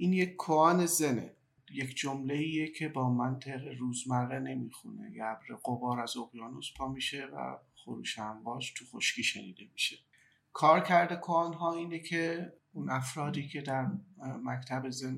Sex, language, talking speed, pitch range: male, Persian, 140 wpm, 125-150 Hz